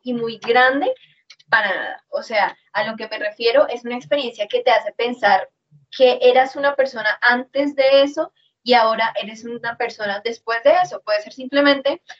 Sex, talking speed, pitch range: female, 180 wpm, 230-280 Hz